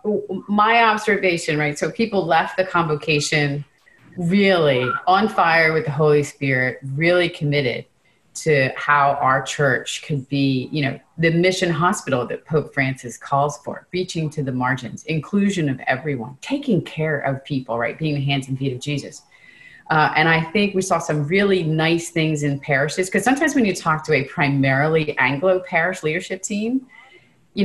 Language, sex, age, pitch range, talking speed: English, female, 30-49, 140-185 Hz, 165 wpm